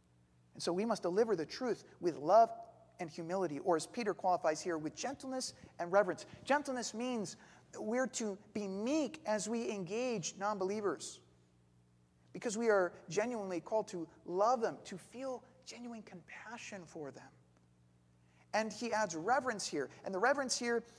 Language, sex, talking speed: English, male, 150 wpm